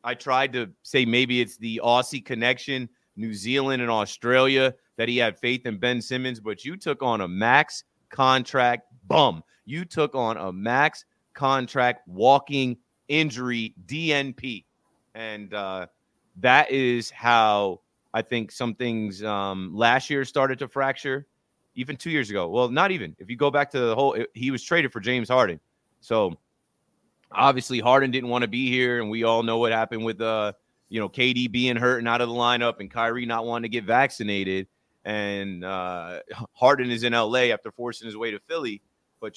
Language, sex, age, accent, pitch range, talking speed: English, male, 30-49, American, 115-130 Hz, 180 wpm